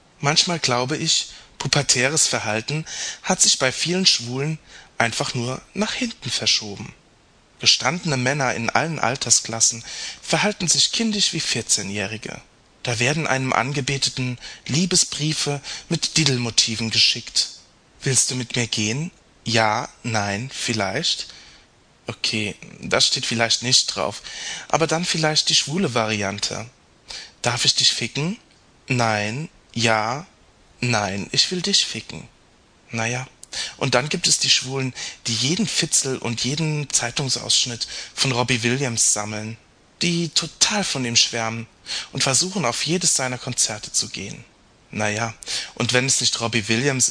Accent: German